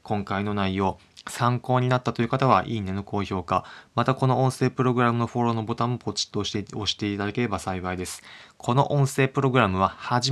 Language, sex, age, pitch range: Japanese, male, 20-39, 100-120 Hz